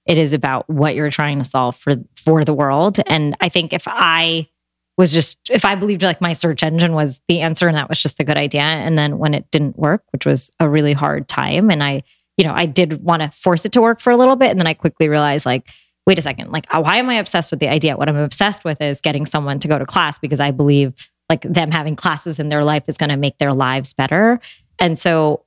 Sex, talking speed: female, 260 wpm